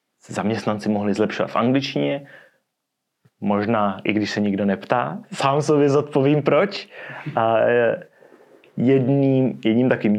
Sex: male